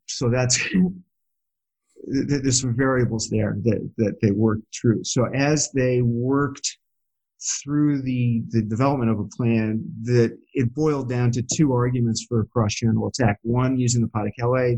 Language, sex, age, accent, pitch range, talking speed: English, male, 50-69, American, 110-125 Hz, 160 wpm